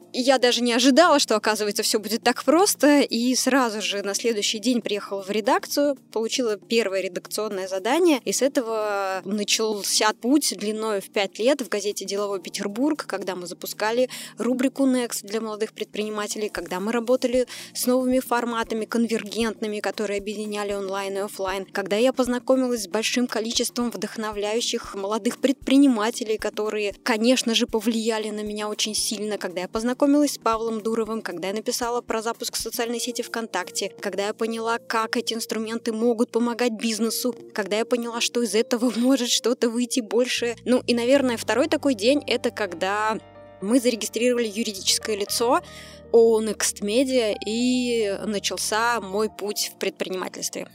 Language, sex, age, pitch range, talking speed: Russian, female, 20-39, 210-245 Hz, 155 wpm